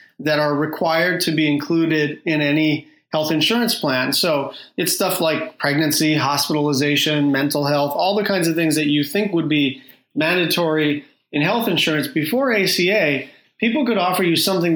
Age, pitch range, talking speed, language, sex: 30-49, 150-175 Hz, 165 wpm, English, male